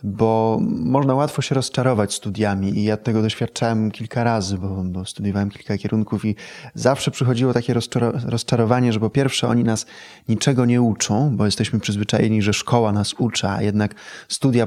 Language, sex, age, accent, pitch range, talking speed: Polish, male, 20-39, native, 110-130 Hz, 170 wpm